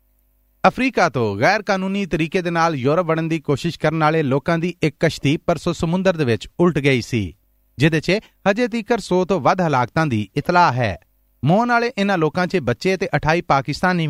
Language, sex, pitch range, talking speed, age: Punjabi, male, 135-190 Hz, 185 wpm, 40-59